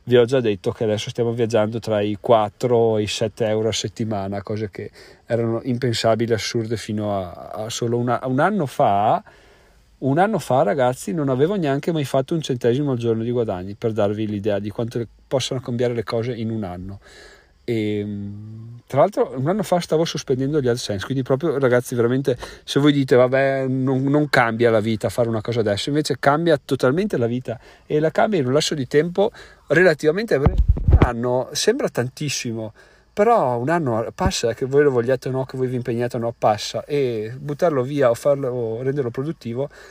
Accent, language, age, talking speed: native, Italian, 40-59, 195 wpm